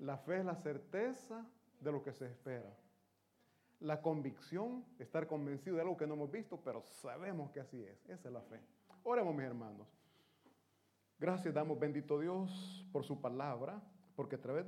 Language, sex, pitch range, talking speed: Italian, male, 135-185 Hz, 170 wpm